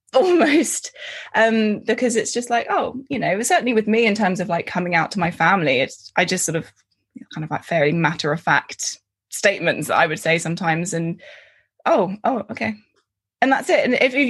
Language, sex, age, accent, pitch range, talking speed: English, female, 20-39, British, 165-230 Hz, 205 wpm